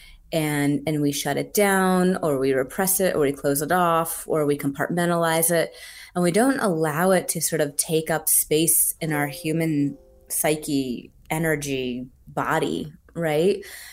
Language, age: English, 20-39